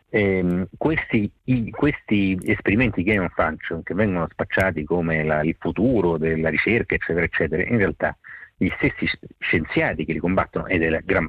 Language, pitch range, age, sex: Dutch, 85-105 Hz, 50-69, male